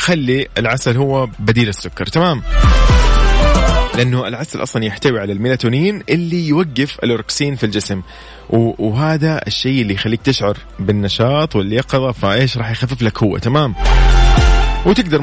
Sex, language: male, Arabic